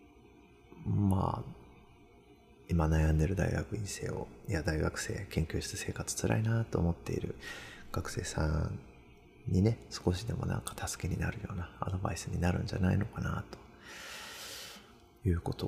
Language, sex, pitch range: Japanese, male, 80-110 Hz